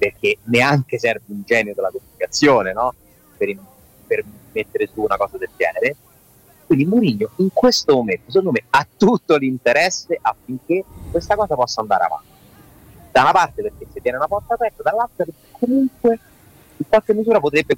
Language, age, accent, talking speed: Italian, 30-49, native, 165 wpm